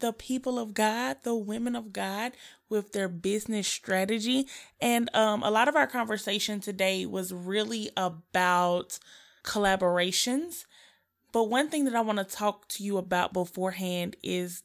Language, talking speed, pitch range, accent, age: English, 150 wpm, 195-245 Hz, American, 20-39